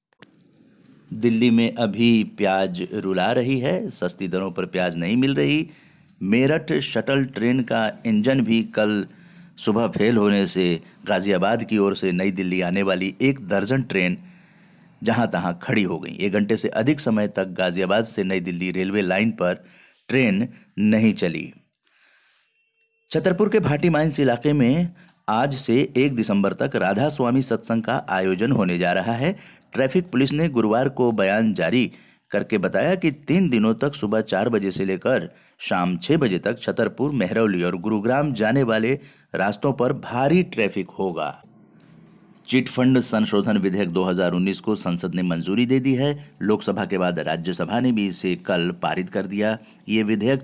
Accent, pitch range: native, 95-135 Hz